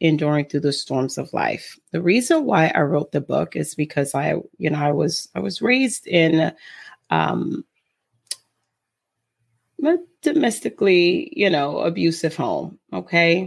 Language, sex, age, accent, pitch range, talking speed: English, female, 30-49, American, 145-175 Hz, 145 wpm